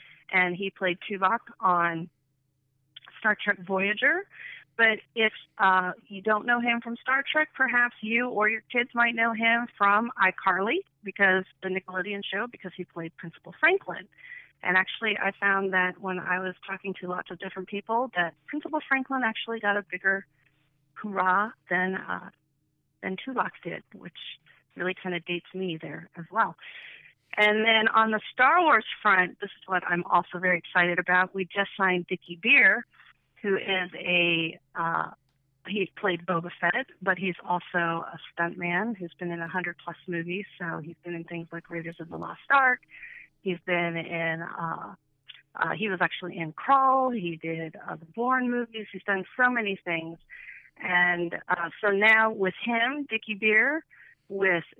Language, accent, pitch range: English, American, 175-225 Hz